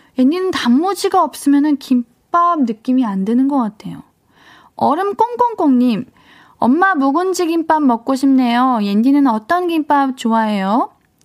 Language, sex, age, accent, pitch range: Korean, female, 20-39, native, 225-320 Hz